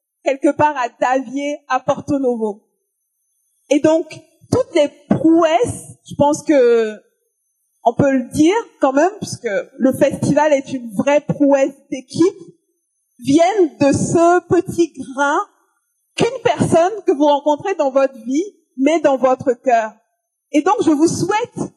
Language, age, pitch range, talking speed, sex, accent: French, 50-69, 270-345 Hz, 140 wpm, female, French